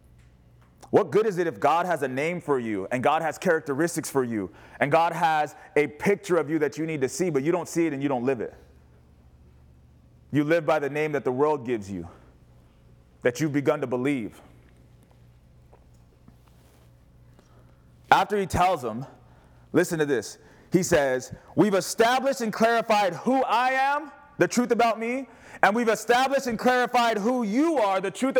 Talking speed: 175 wpm